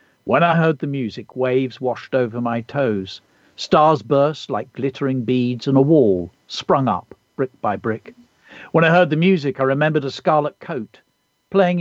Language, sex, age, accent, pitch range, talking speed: English, male, 50-69, British, 120-160 Hz, 175 wpm